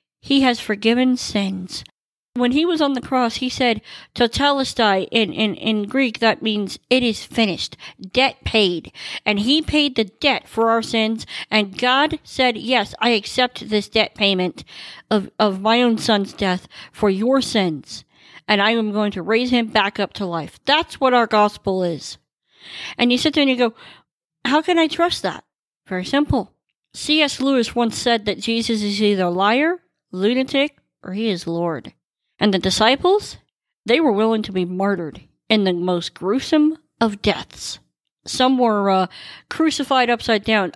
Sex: female